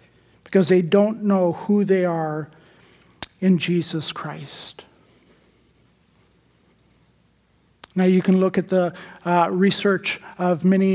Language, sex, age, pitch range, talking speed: English, male, 50-69, 175-200 Hz, 115 wpm